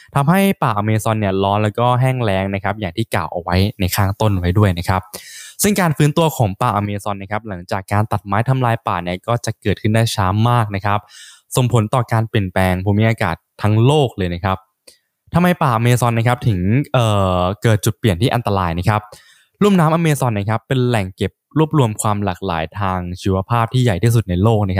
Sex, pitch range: male, 95-120 Hz